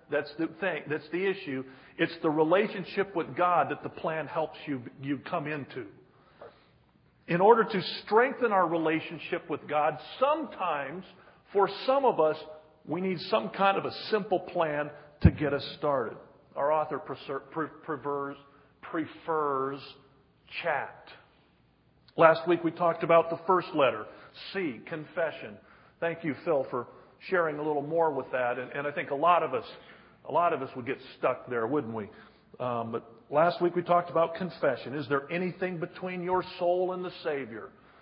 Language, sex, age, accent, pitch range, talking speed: English, male, 50-69, American, 145-185 Hz, 165 wpm